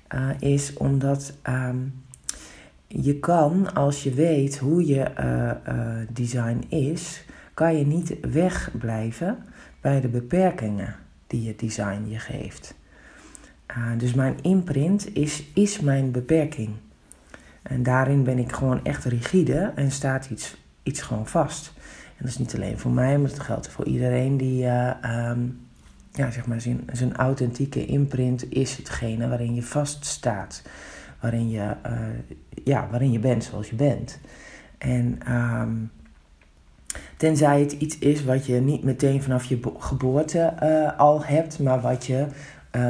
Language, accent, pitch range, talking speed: Dutch, Dutch, 120-140 Hz, 145 wpm